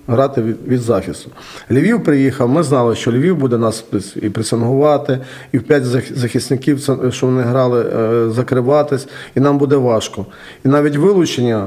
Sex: male